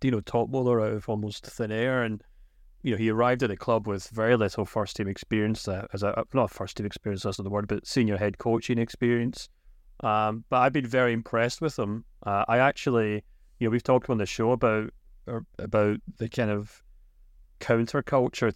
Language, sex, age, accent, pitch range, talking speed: English, male, 30-49, British, 100-120 Hz, 210 wpm